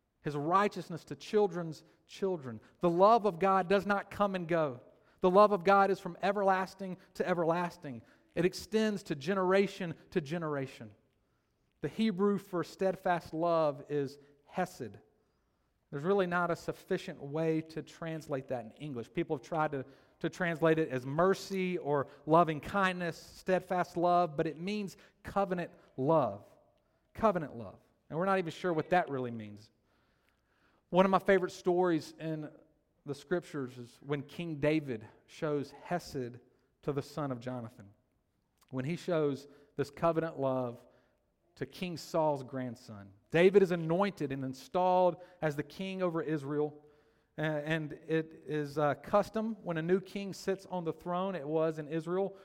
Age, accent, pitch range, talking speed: 40-59, American, 140-185 Hz, 150 wpm